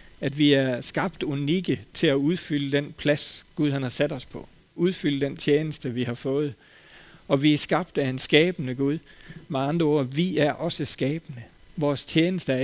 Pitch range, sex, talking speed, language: 130-160 Hz, male, 190 wpm, Danish